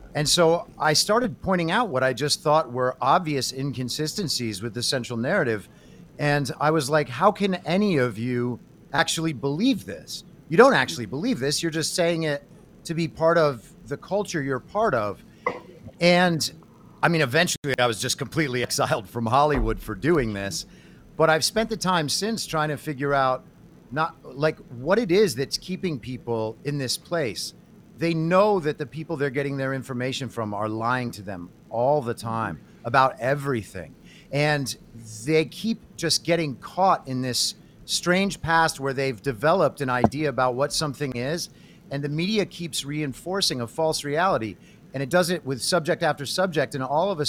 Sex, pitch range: male, 130-170 Hz